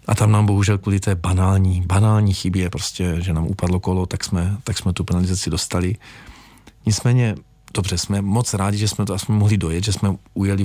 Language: Czech